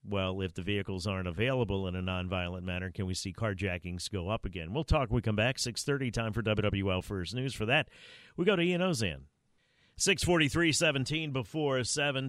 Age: 50-69